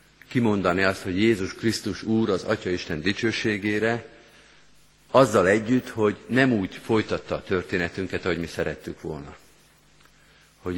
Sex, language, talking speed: male, Hungarian, 120 wpm